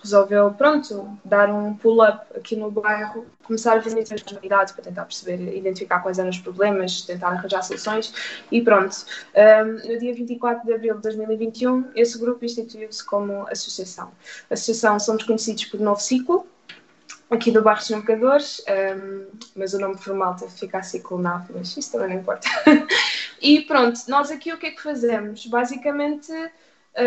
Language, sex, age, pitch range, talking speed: Portuguese, female, 20-39, 205-240 Hz, 165 wpm